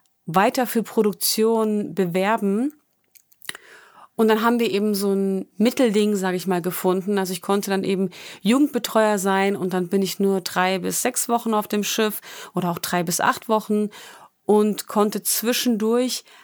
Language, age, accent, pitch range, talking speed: German, 30-49, German, 195-230 Hz, 160 wpm